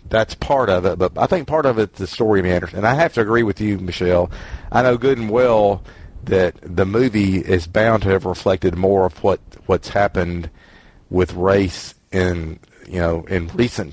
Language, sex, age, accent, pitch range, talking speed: English, male, 40-59, American, 85-105 Hz, 200 wpm